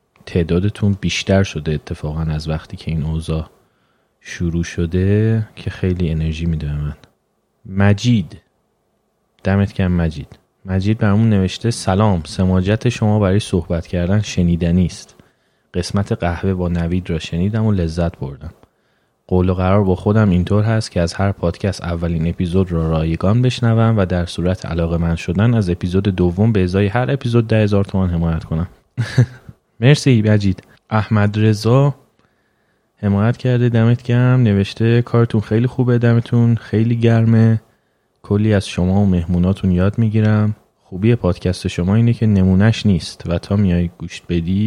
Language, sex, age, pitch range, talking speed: Persian, male, 30-49, 85-110 Hz, 140 wpm